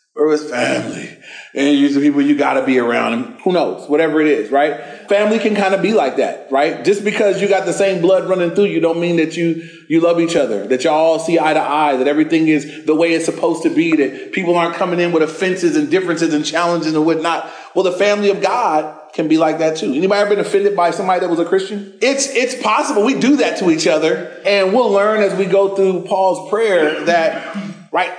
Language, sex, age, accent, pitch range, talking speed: English, male, 30-49, American, 160-205 Hz, 240 wpm